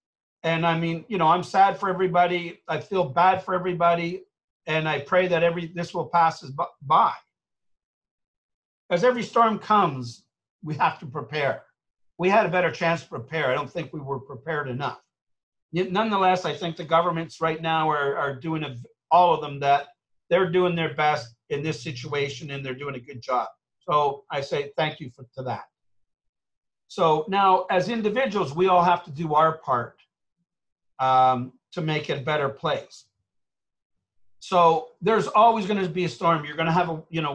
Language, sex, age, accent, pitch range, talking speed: English, male, 50-69, American, 145-180 Hz, 185 wpm